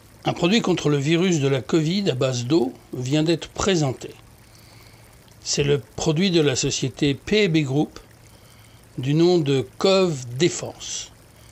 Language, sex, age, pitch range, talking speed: French, male, 60-79, 115-160 Hz, 135 wpm